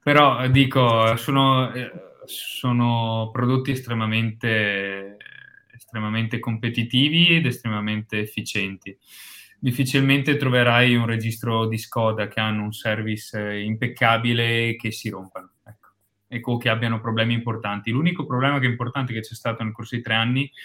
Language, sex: Italian, male